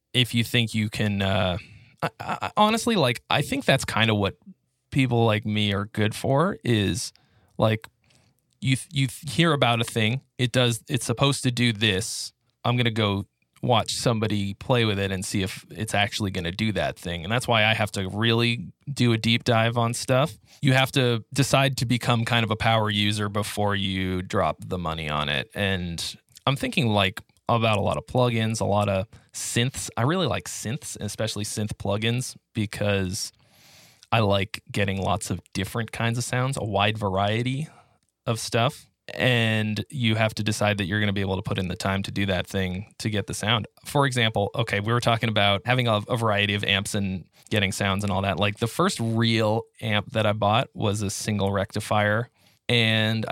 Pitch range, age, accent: 100-120 Hz, 20-39, American